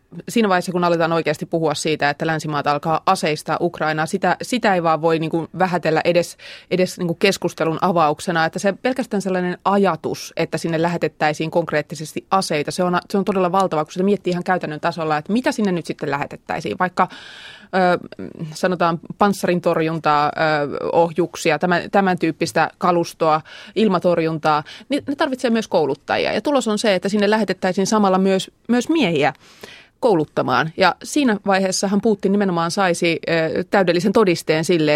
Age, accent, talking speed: 20-39, native, 150 wpm